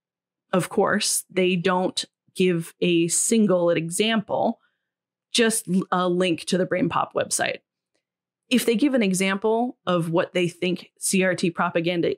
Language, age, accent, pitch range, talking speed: English, 20-39, American, 175-210 Hz, 130 wpm